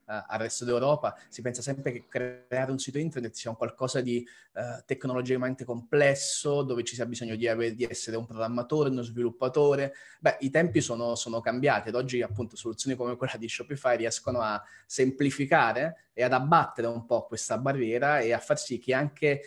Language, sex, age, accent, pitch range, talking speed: Italian, male, 20-39, native, 120-140 Hz, 190 wpm